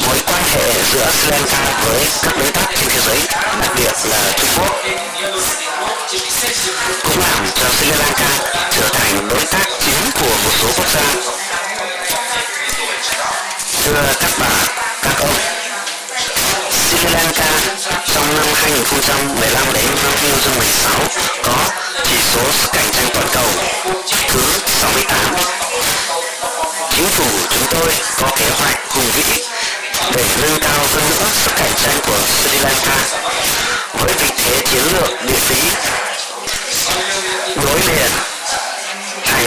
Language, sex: Chinese, male